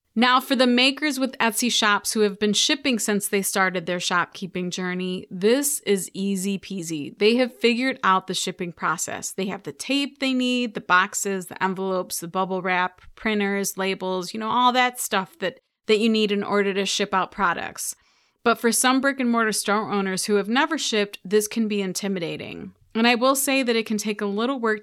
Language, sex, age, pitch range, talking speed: English, female, 30-49, 190-235 Hz, 205 wpm